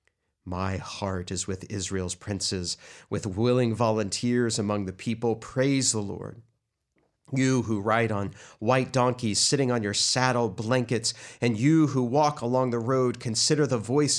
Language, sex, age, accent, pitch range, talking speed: English, male, 40-59, American, 105-130 Hz, 150 wpm